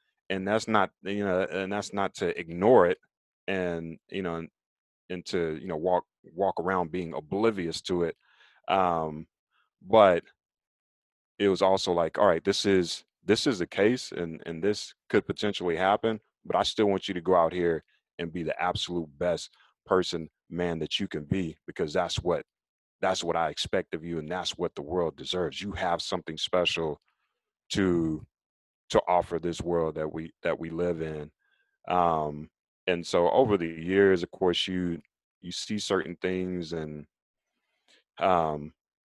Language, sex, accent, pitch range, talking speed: English, male, American, 85-100 Hz, 170 wpm